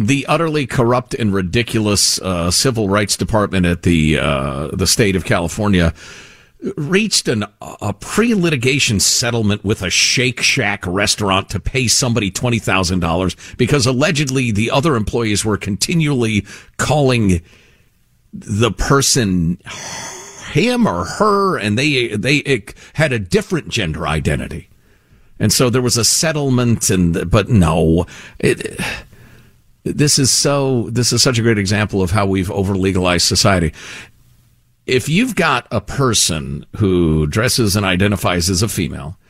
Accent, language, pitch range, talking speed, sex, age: American, English, 95-130 Hz, 140 wpm, male, 50-69